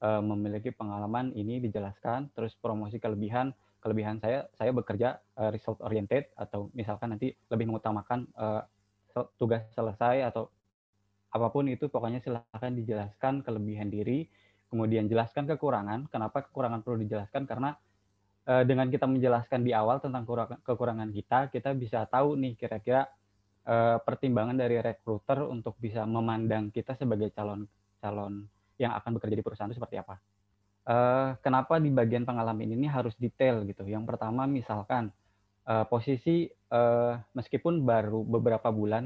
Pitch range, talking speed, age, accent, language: 105-125 Hz, 125 wpm, 20-39, native, Indonesian